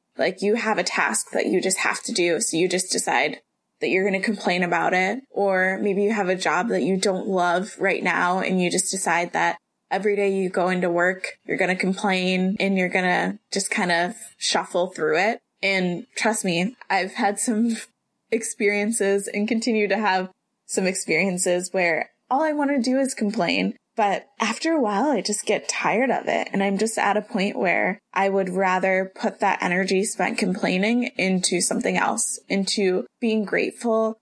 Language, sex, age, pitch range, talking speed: English, female, 20-39, 185-220 Hz, 195 wpm